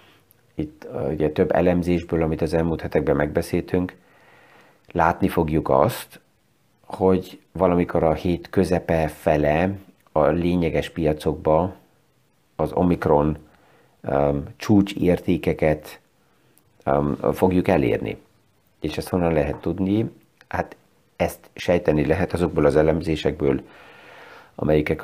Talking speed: 100 wpm